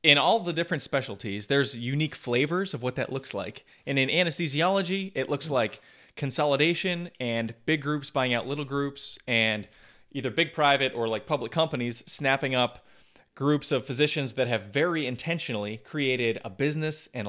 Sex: male